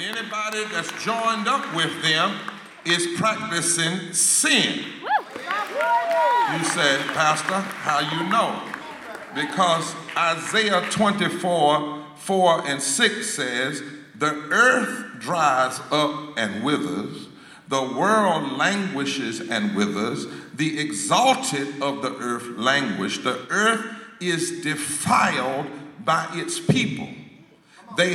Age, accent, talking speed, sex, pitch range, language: 50-69, American, 100 wpm, male, 145-200 Hz, English